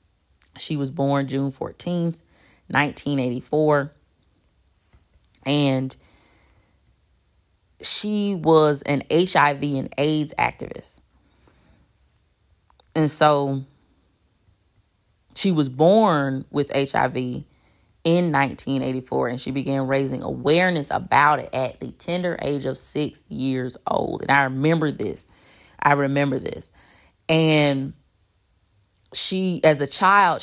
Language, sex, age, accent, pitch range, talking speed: English, female, 20-39, American, 105-150 Hz, 100 wpm